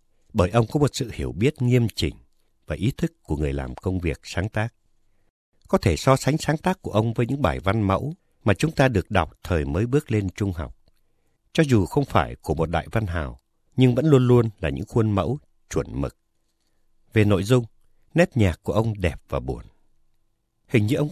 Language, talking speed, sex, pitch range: Vietnamese, 215 wpm, male, 80-115 Hz